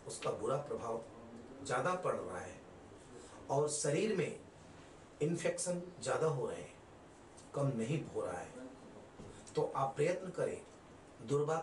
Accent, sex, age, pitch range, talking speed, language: native, male, 40-59, 120-165 Hz, 130 wpm, Hindi